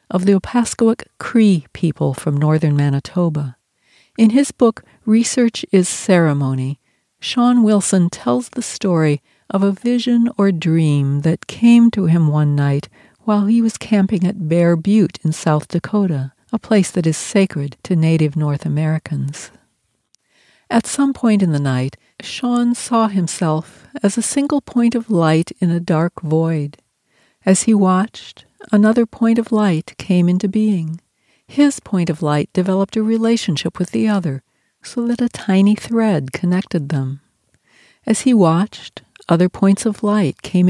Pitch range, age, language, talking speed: 160-220 Hz, 60-79, English, 150 wpm